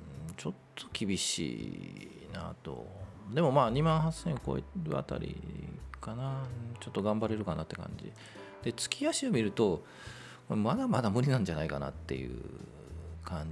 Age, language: 40-59, Japanese